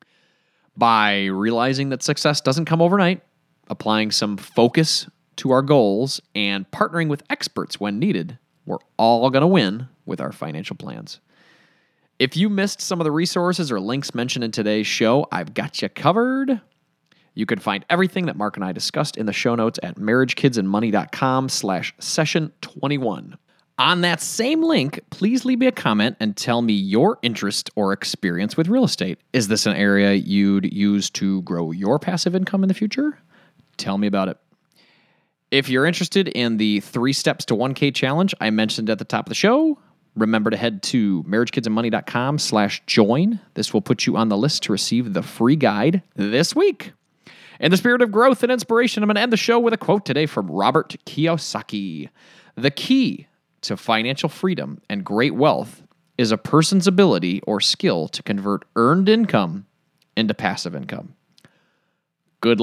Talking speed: 170 wpm